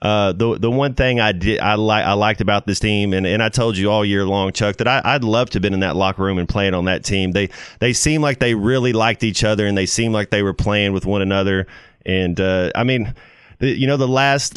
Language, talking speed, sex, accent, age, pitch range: English, 275 wpm, male, American, 30-49, 100-120 Hz